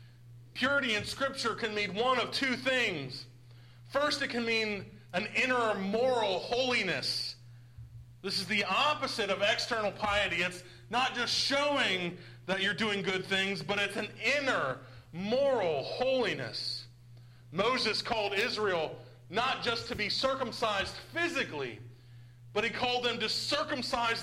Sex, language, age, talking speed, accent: male, English, 40-59, 135 wpm, American